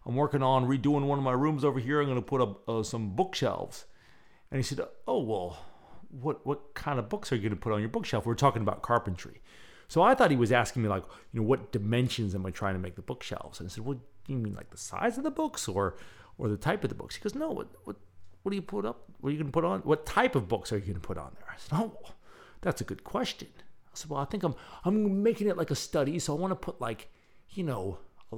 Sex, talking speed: male, 290 wpm